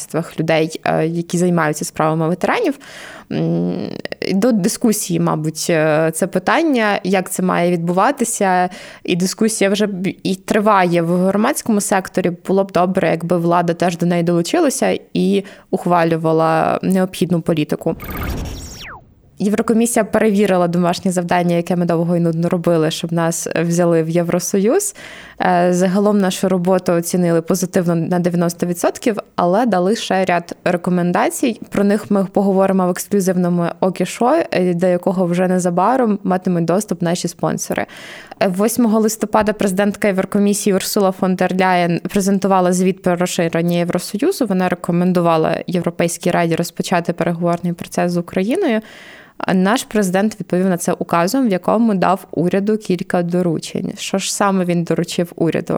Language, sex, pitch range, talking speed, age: Ukrainian, female, 175-200 Hz, 125 wpm, 20-39